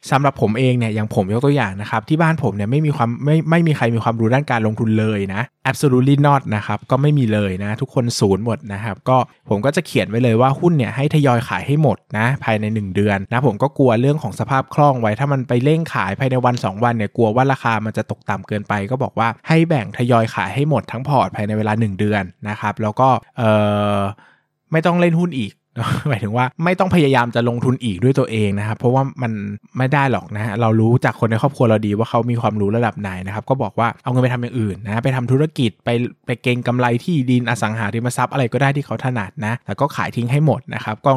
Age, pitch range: 20-39, 110-135 Hz